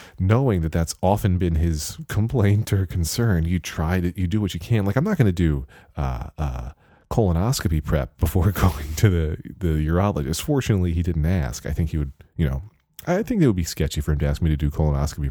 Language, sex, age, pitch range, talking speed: English, male, 30-49, 75-95 Hz, 225 wpm